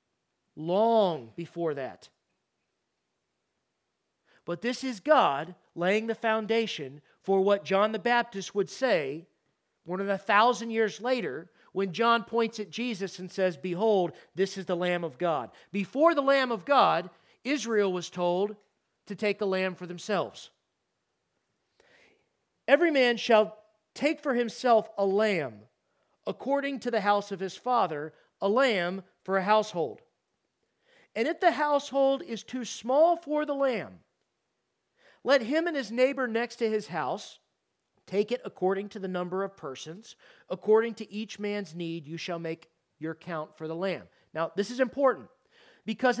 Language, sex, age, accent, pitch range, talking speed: English, male, 40-59, American, 185-250 Hz, 150 wpm